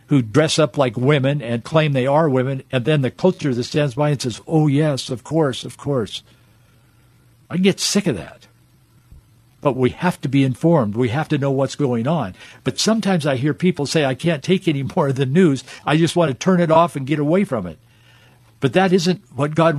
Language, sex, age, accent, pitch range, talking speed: English, male, 60-79, American, 125-170 Hz, 225 wpm